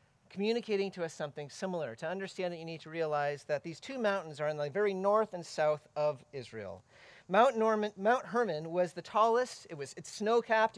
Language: English